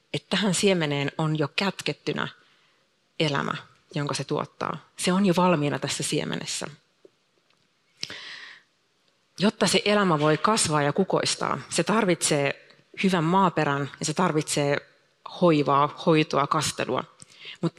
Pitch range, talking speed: 150-185 Hz, 115 wpm